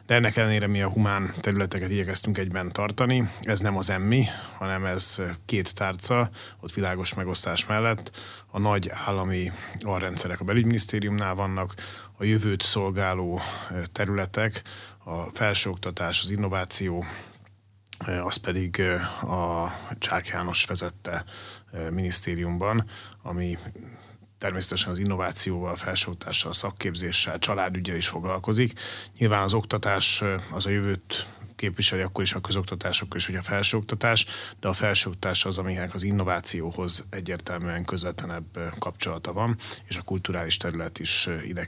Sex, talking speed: male, 125 wpm